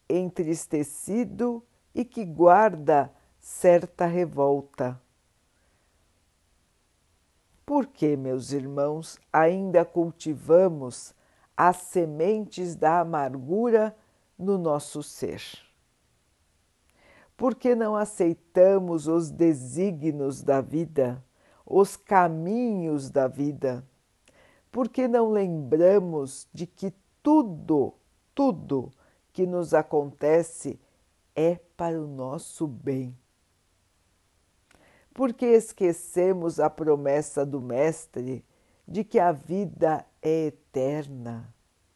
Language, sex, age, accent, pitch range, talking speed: Portuguese, female, 60-79, Brazilian, 130-180 Hz, 85 wpm